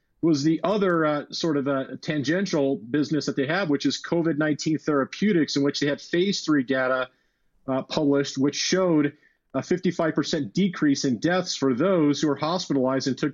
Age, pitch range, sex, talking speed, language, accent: 40-59, 140-170 Hz, male, 175 wpm, English, American